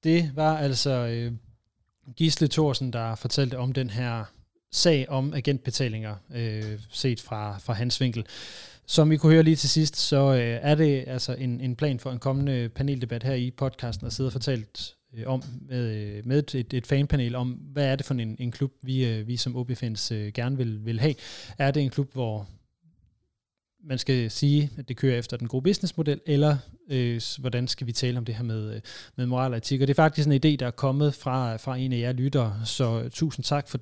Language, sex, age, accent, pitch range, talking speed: Danish, male, 20-39, native, 115-140 Hz, 210 wpm